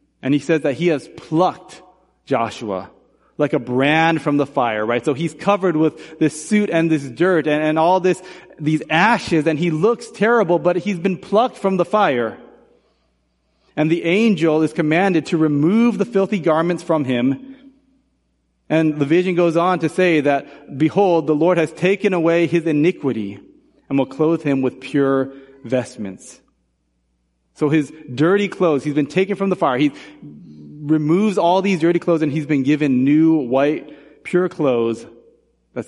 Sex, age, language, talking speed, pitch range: male, 30-49, English, 170 wpm, 130-180 Hz